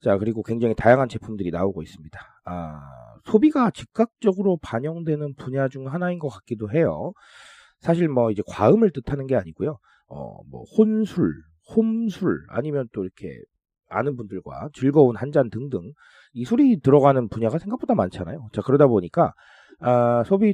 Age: 30-49